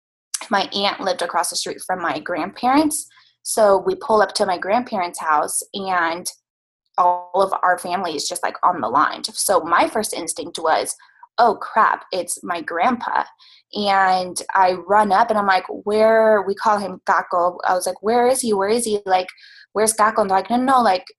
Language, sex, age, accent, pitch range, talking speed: English, female, 20-39, American, 180-230 Hz, 195 wpm